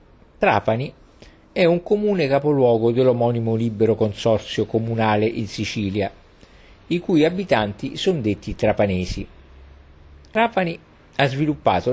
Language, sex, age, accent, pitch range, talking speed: Italian, male, 50-69, native, 105-145 Hz, 100 wpm